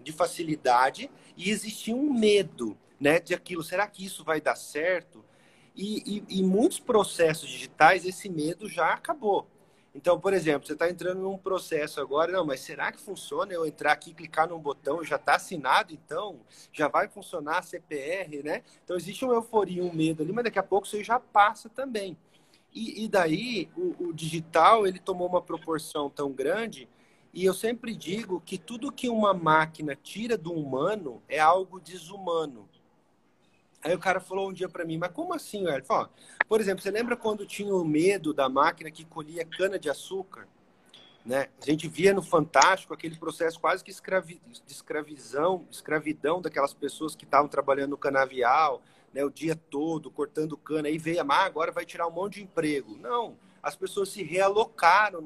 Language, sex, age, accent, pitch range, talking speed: Portuguese, male, 40-59, Brazilian, 155-200 Hz, 180 wpm